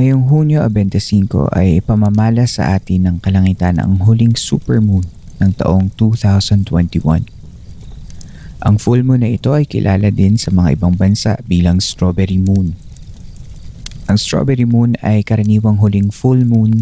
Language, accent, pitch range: Filipino, native, 95-115 Hz